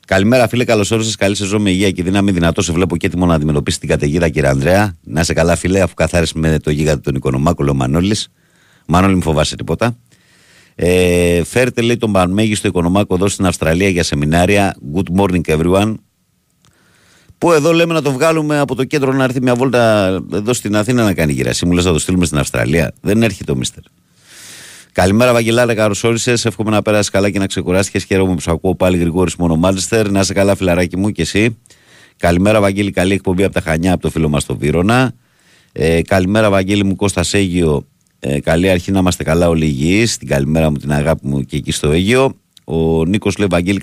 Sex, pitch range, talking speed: male, 80-100 Hz, 205 wpm